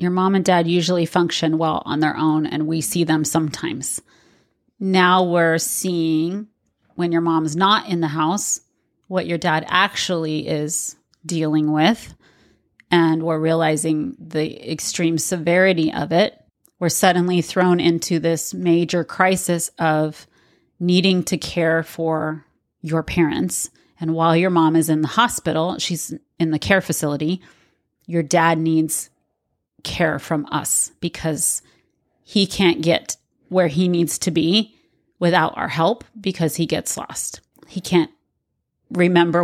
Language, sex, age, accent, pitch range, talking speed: English, female, 30-49, American, 160-180 Hz, 140 wpm